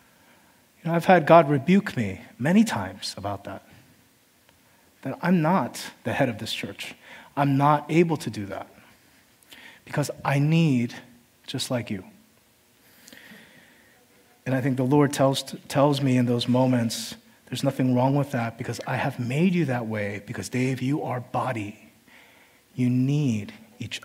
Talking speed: 150 wpm